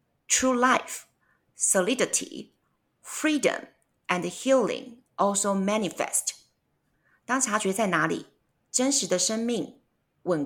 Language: Chinese